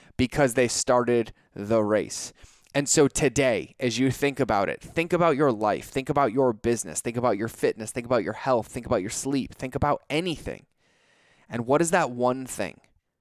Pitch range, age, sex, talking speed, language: 115-135 Hz, 20-39, male, 190 wpm, English